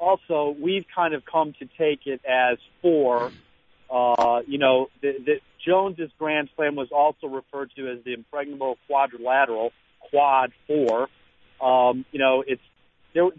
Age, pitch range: 40-59, 125-155 Hz